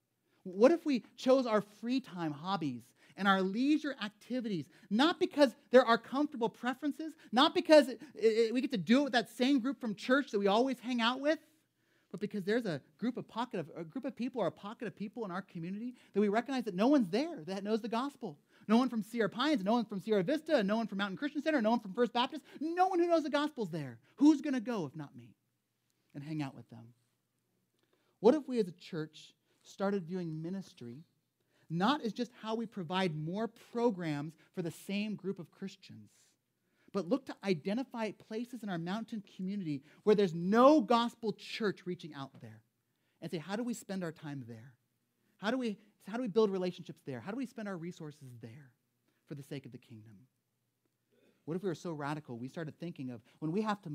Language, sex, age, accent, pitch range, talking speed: English, male, 30-49, American, 165-240 Hz, 215 wpm